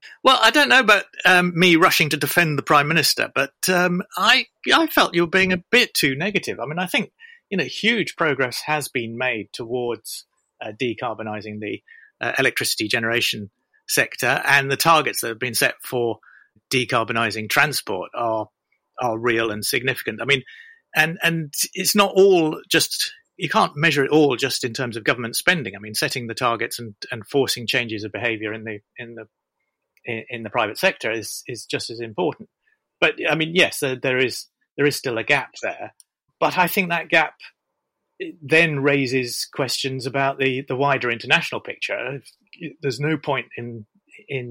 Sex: male